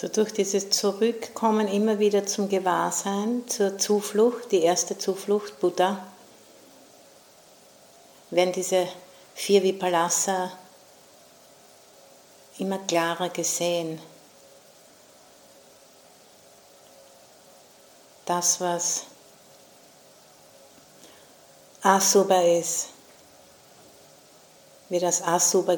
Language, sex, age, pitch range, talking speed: English, female, 60-79, 155-180 Hz, 65 wpm